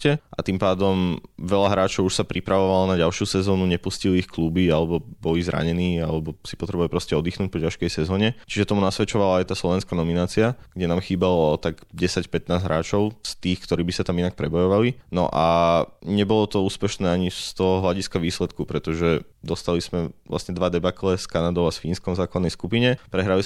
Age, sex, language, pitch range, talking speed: 20-39, male, Slovak, 85-95 Hz, 180 wpm